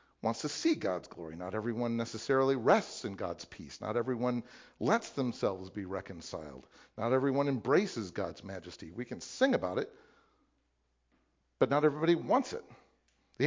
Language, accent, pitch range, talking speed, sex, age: English, American, 135-195 Hz, 150 wpm, male, 50-69